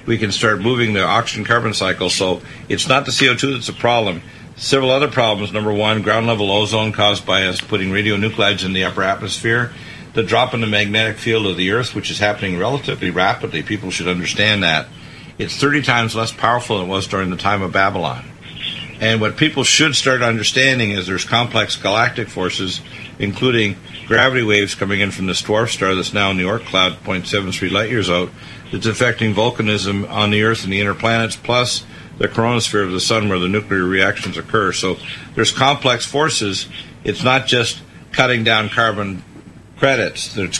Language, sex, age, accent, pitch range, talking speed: English, male, 50-69, American, 95-120 Hz, 185 wpm